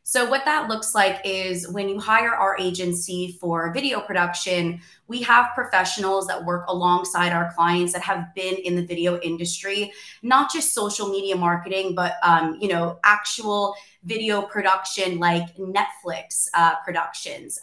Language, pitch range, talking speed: English, 175-205 Hz, 155 wpm